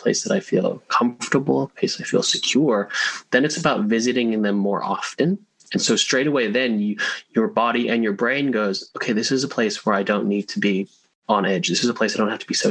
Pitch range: 100-125 Hz